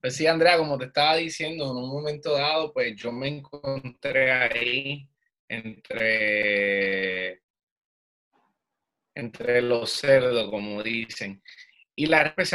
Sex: male